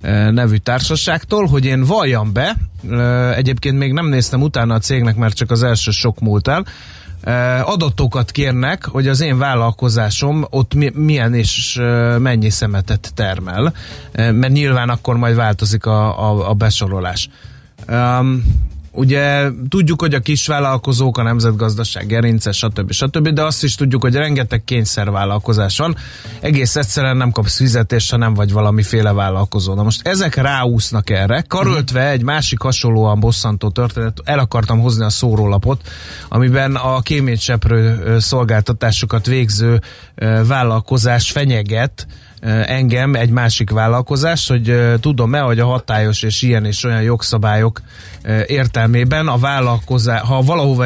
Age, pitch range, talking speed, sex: 30-49, 110-130 Hz, 130 wpm, male